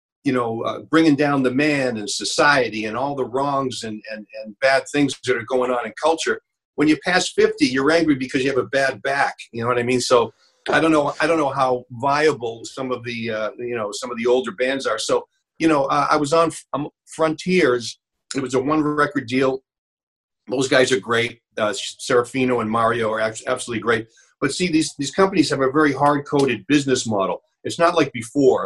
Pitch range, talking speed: 115-145 Hz, 215 wpm